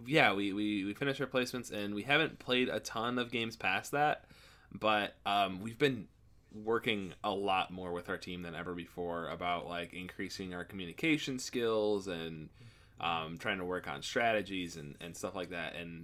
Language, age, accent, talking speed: English, 20-39, American, 185 wpm